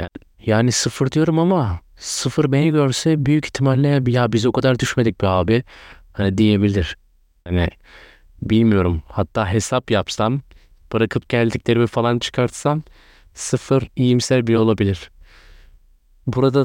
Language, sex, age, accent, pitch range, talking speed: Turkish, male, 30-49, native, 105-135 Hz, 115 wpm